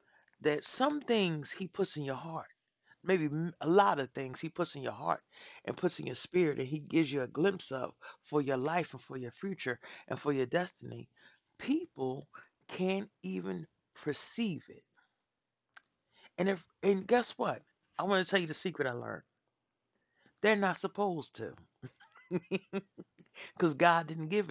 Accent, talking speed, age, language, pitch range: American, 165 wpm, 60-79, English, 140-190 Hz